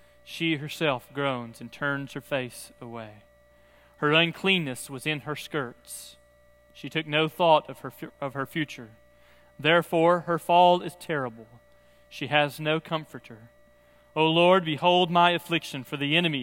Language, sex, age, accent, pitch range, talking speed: English, male, 30-49, American, 130-175 Hz, 140 wpm